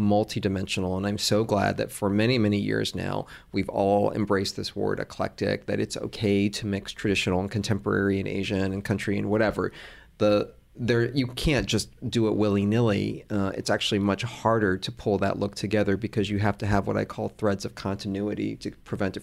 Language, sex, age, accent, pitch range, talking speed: English, male, 30-49, American, 100-110 Hz, 195 wpm